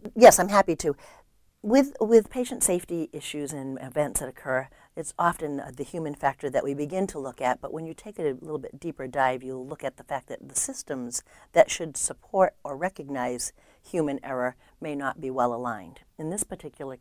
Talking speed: 200 wpm